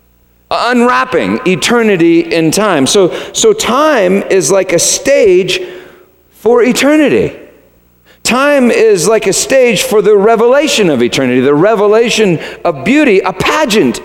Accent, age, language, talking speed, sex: American, 50-69, English, 125 wpm, male